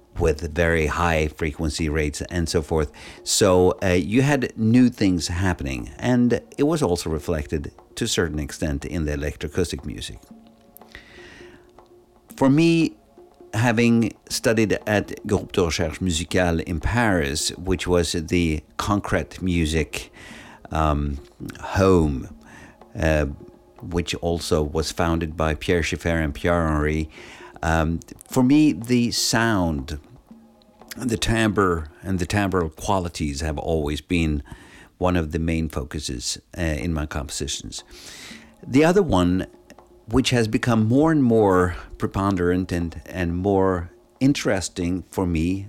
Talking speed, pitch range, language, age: 125 wpm, 80-105 Hz, English, 50-69